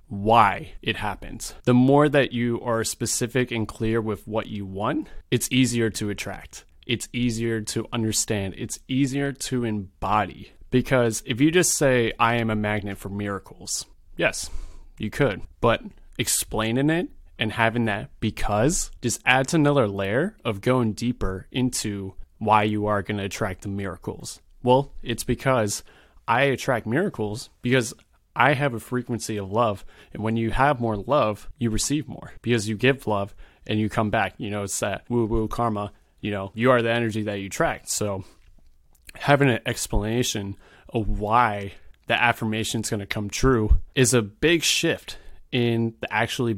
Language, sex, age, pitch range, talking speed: English, male, 20-39, 105-125 Hz, 165 wpm